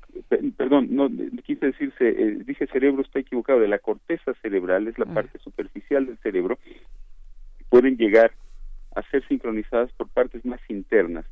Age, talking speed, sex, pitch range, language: 50-69, 150 wpm, male, 110-150 Hz, Spanish